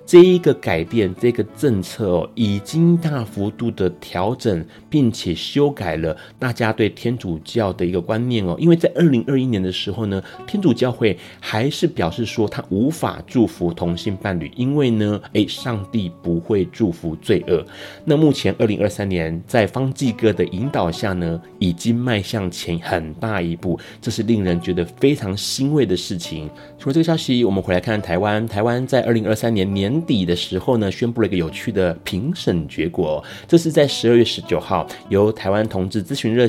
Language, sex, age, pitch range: Chinese, male, 30-49, 90-125 Hz